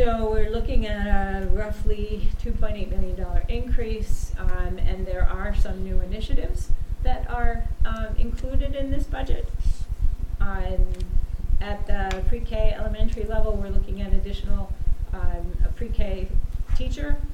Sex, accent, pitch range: female, American, 80-90 Hz